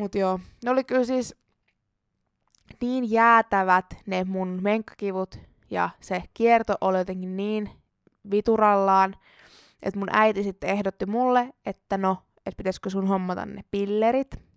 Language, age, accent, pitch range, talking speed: Finnish, 20-39, native, 190-220 Hz, 130 wpm